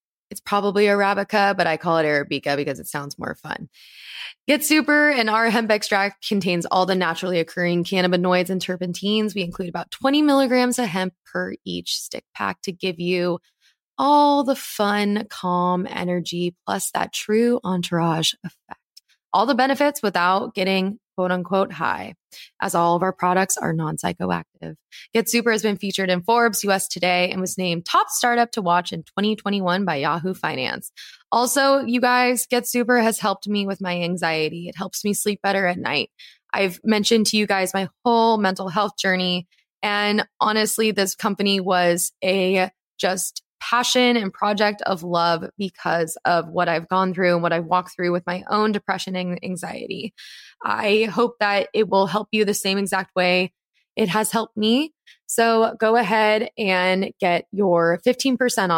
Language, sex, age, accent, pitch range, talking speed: English, female, 20-39, American, 180-225 Hz, 170 wpm